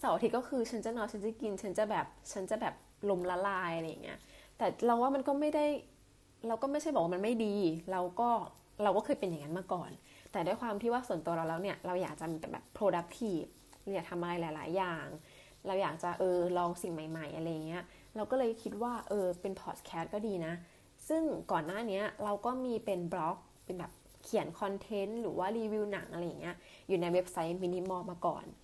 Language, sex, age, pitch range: English, female, 20-39, 165-220 Hz